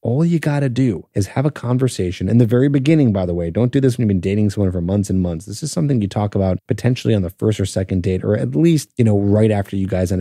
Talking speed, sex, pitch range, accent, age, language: 295 wpm, male, 95-120 Hz, American, 30-49, English